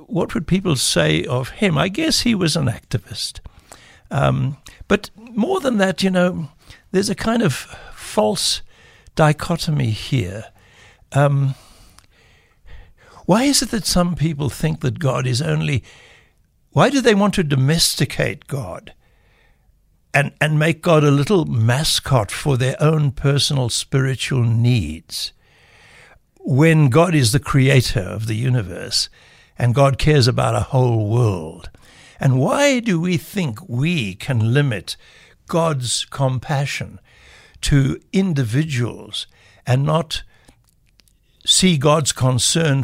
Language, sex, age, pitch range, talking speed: English, male, 60-79, 120-170 Hz, 125 wpm